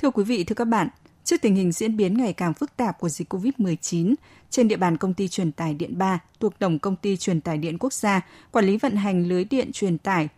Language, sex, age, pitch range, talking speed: Vietnamese, female, 10-29, 180-220 Hz, 255 wpm